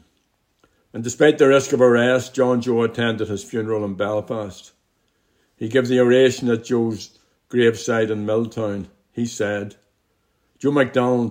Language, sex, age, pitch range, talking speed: English, male, 60-79, 105-125 Hz, 140 wpm